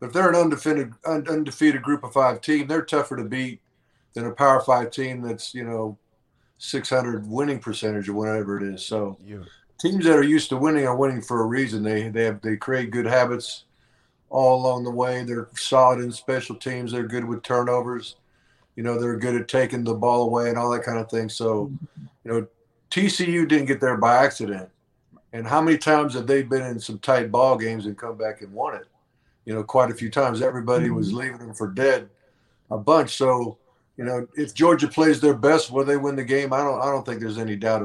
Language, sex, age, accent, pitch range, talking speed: English, male, 50-69, American, 115-135 Hz, 215 wpm